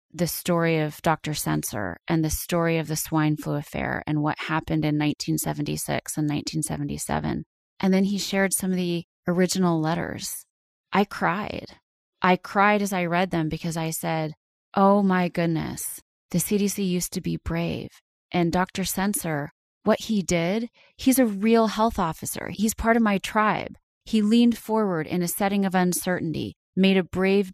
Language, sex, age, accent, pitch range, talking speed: English, female, 30-49, American, 155-185 Hz, 165 wpm